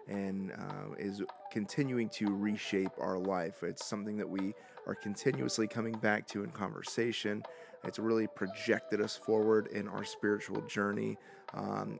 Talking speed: 145 wpm